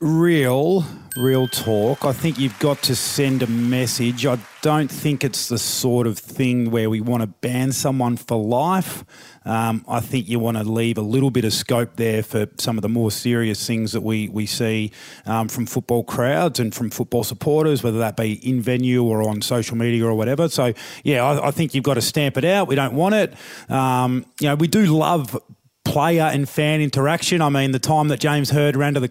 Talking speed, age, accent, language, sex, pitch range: 215 wpm, 30-49, Australian, English, male, 115-150 Hz